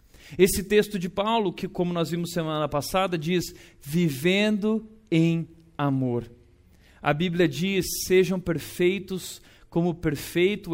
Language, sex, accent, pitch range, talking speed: Portuguese, male, Brazilian, 155-200 Hz, 125 wpm